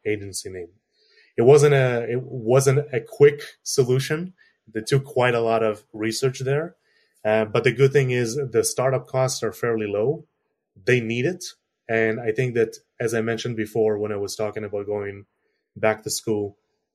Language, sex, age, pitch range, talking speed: English, male, 20-39, 110-130 Hz, 175 wpm